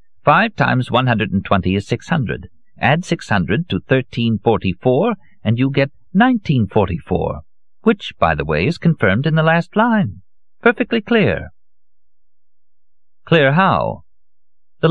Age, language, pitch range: 50-69, English, 85-125 Hz